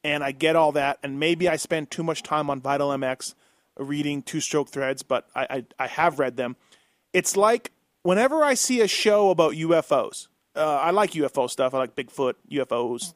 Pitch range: 150-190 Hz